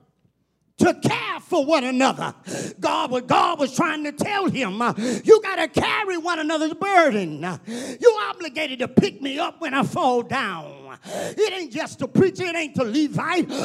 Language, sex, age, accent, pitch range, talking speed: English, male, 40-59, American, 265-360 Hz, 165 wpm